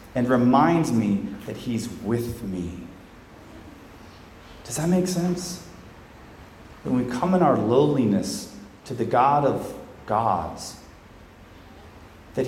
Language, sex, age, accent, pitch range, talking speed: English, male, 30-49, American, 105-135 Hz, 110 wpm